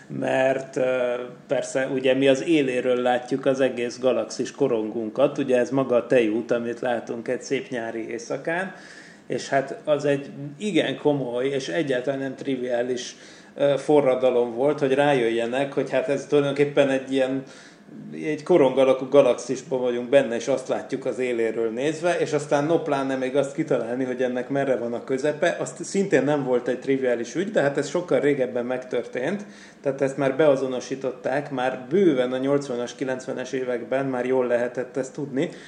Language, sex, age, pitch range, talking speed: Hungarian, male, 30-49, 125-145 Hz, 155 wpm